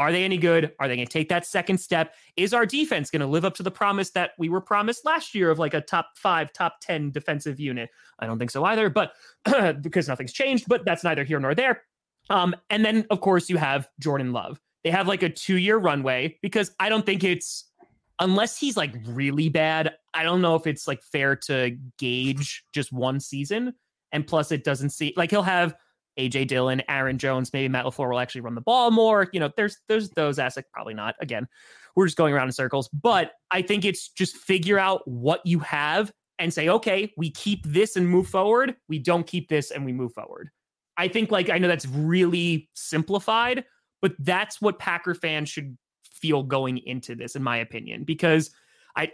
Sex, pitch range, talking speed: male, 140-190 Hz, 215 wpm